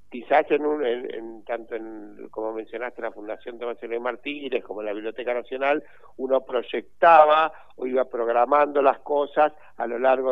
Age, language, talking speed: 60-79, Spanish, 175 wpm